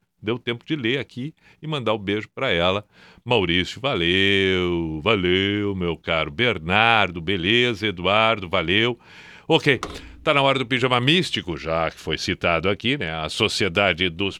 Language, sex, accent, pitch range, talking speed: Portuguese, male, Brazilian, 100-140 Hz, 150 wpm